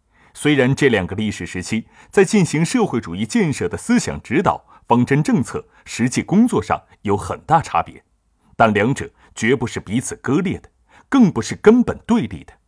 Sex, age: male, 30-49